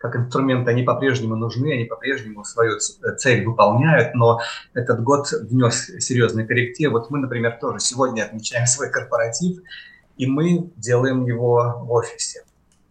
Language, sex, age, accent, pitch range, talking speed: Russian, male, 30-49, native, 115-145 Hz, 145 wpm